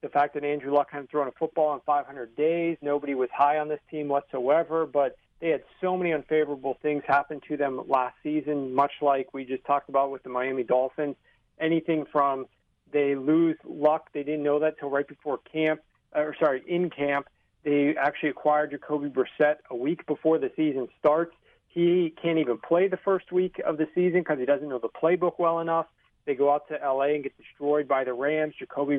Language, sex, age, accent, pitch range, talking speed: English, male, 40-59, American, 140-160 Hz, 205 wpm